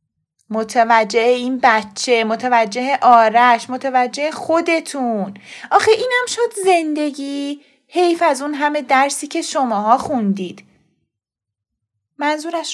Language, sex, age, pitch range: Persian, female, 30-49, 235-360 Hz